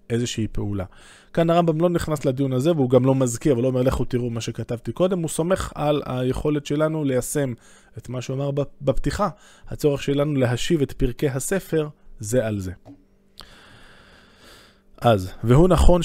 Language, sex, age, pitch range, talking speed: Hebrew, male, 20-39, 115-150 Hz, 160 wpm